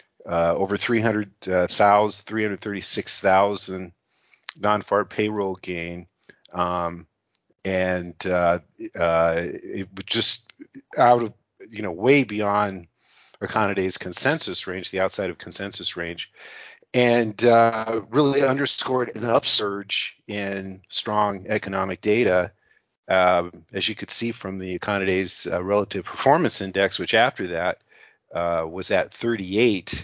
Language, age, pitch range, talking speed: English, 40-59, 90-110 Hz, 115 wpm